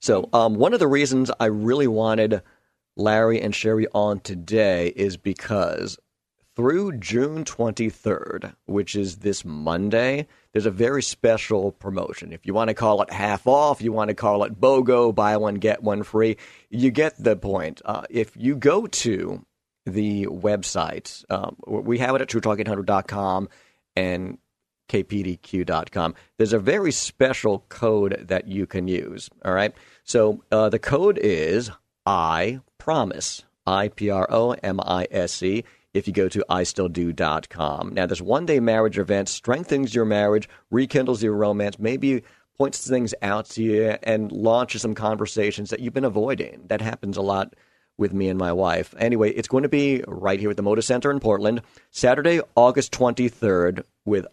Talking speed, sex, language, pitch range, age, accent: 155 wpm, male, English, 100-120 Hz, 50-69, American